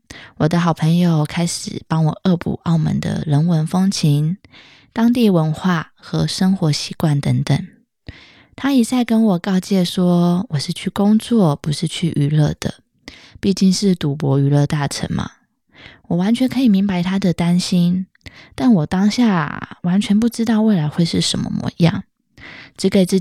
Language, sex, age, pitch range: Chinese, female, 20-39, 160-200 Hz